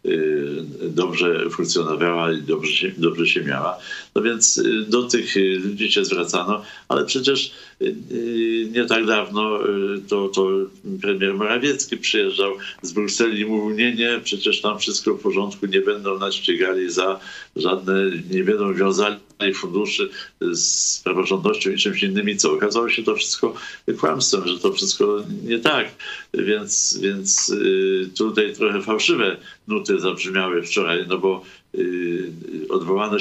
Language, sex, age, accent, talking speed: Polish, male, 50-69, native, 130 wpm